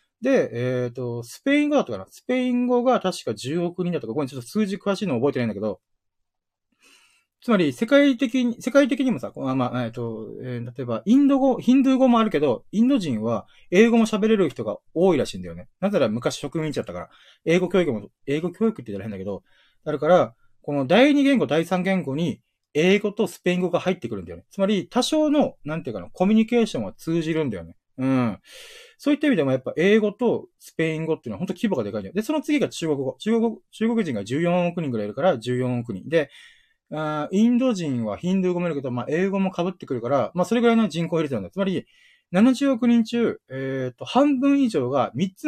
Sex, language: male, Japanese